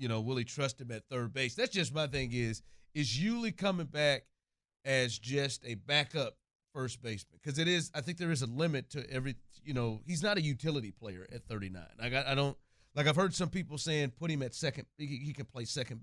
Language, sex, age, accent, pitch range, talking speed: English, male, 40-59, American, 125-165 Hz, 230 wpm